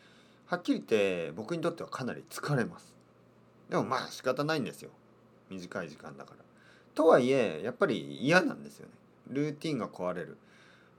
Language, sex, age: Japanese, male, 40-59